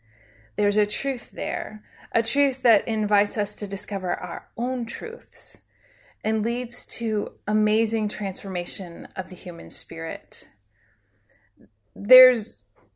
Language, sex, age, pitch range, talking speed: English, female, 30-49, 170-220 Hz, 110 wpm